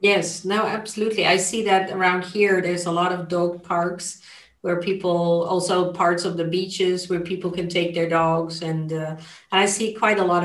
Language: English